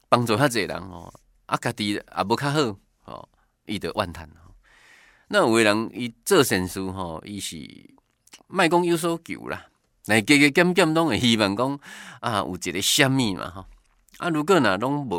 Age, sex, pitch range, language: 20-39, male, 95-140 Hz, Chinese